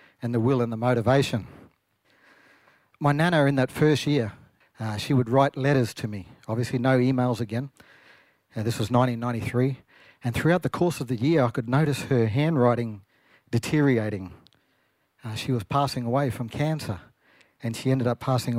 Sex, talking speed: male, 170 wpm